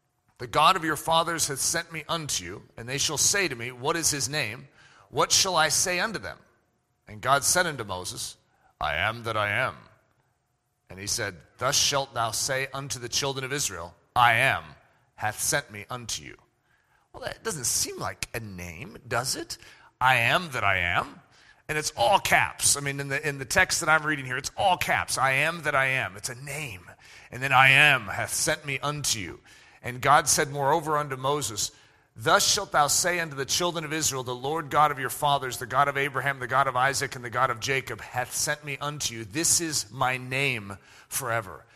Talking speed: 210 wpm